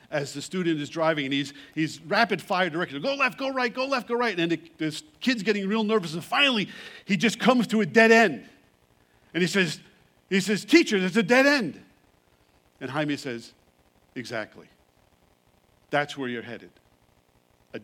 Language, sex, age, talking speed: English, male, 50-69, 180 wpm